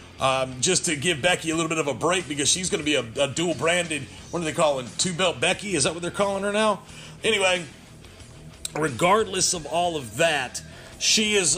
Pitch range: 145-190 Hz